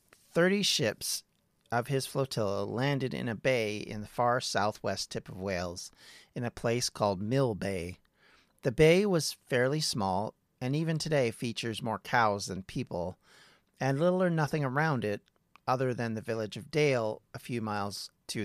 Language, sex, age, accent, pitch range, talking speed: English, male, 40-59, American, 100-135 Hz, 165 wpm